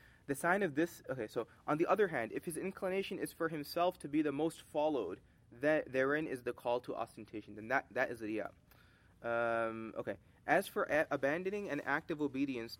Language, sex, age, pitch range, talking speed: English, male, 20-39, 130-155 Hz, 205 wpm